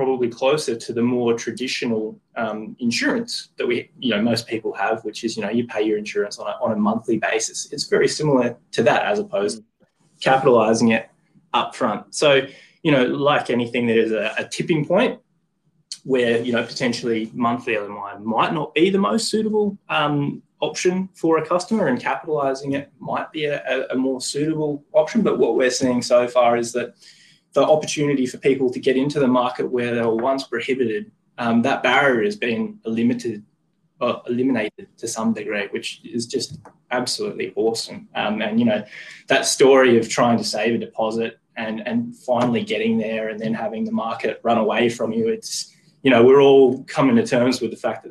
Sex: male